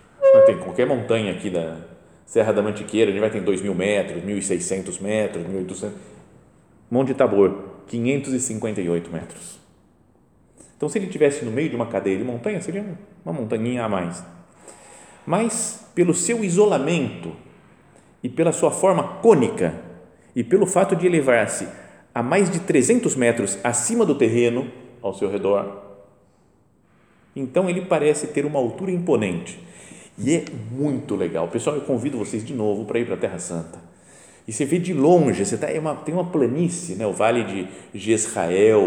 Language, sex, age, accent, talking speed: Portuguese, male, 40-59, Brazilian, 155 wpm